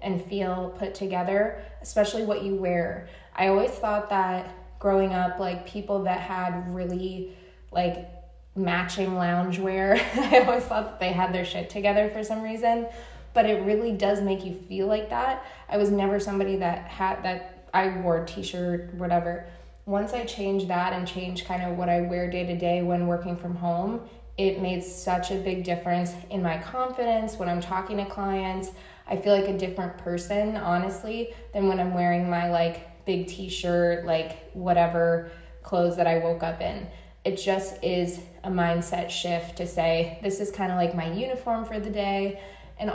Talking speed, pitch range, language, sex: 180 wpm, 175-200 Hz, English, female